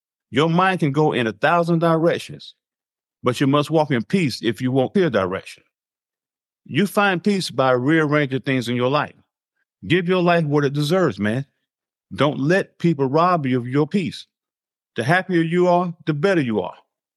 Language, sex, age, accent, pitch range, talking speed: English, male, 50-69, American, 130-175 Hz, 180 wpm